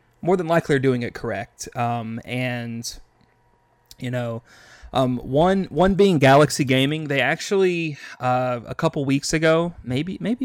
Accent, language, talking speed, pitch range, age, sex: American, English, 150 wpm, 120-145 Hz, 30-49, male